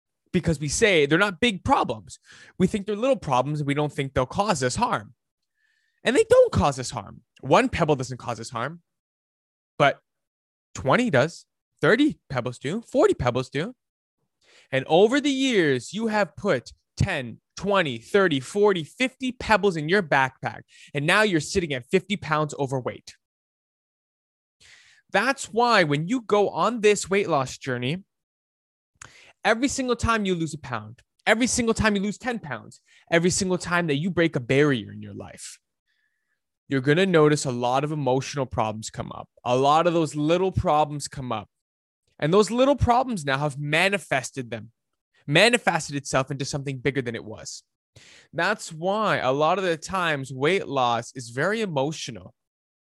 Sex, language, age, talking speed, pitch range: male, English, 20-39, 165 wpm, 130-205 Hz